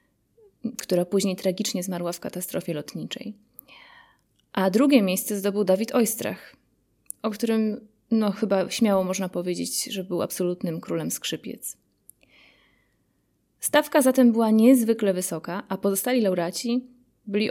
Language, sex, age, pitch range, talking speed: Polish, female, 20-39, 185-230 Hz, 115 wpm